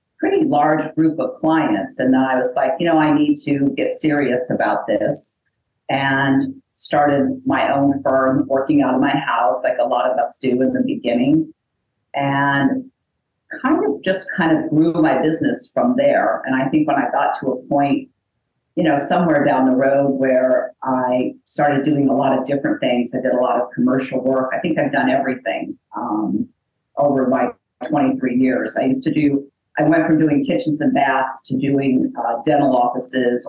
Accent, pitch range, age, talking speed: American, 130-190 Hz, 40-59, 190 wpm